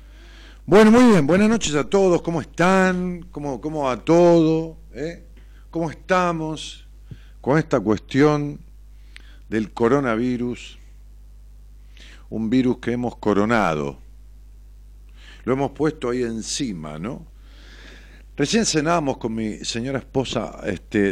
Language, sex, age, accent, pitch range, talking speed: Spanish, male, 50-69, Argentinian, 95-140 Hz, 110 wpm